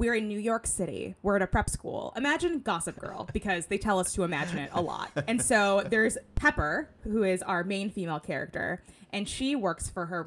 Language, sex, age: English, female, 20-39